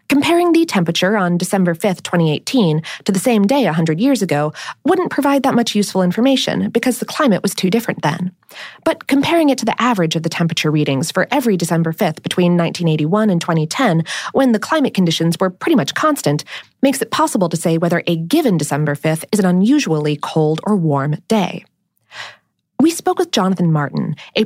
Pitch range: 165-260 Hz